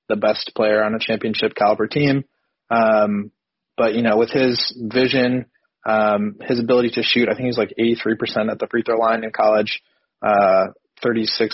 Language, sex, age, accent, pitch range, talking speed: English, male, 20-39, American, 105-125 Hz, 175 wpm